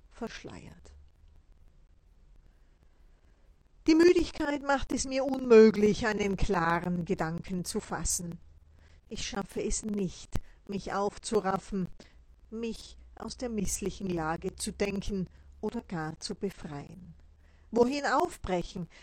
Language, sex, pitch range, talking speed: German, female, 170-220 Hz, 100 wpm